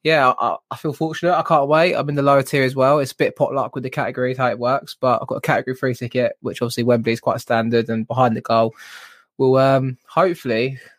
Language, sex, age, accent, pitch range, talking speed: English, male, 20-39, British, 125-145 Hz, 245 wpm